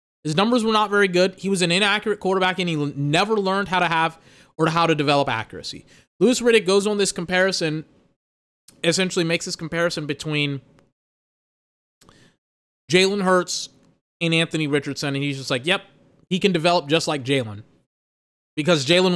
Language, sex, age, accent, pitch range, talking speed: English, male, 20-39, American, 140-180 Hz, 165 wpm